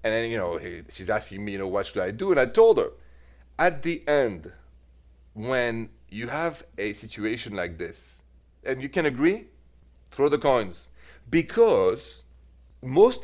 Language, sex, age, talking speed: English, male, 40-59, 165 wpm